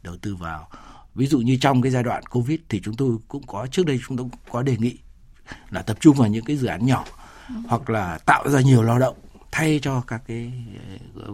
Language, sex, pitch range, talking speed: Vietnamese, male, 110-140 Hz, 235 wpm